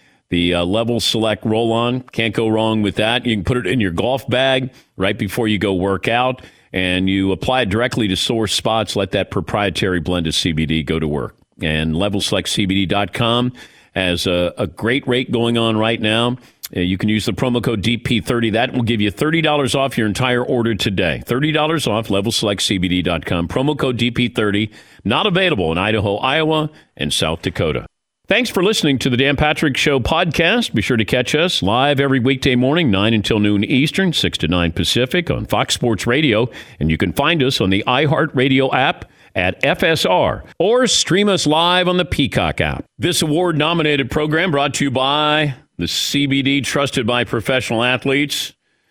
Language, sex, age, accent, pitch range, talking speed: English, male, 40-59, American, 105-140 Hz, 180 wpm